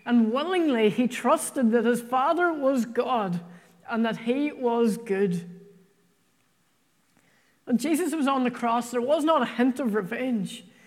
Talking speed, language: 150 wpm, English